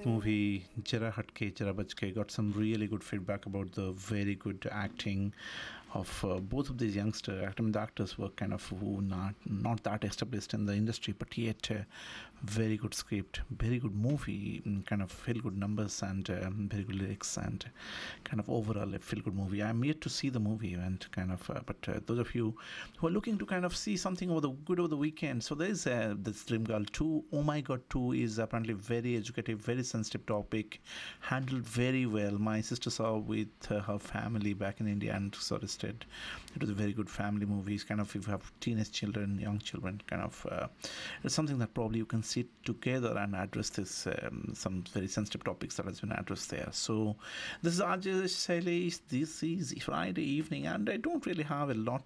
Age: 50-69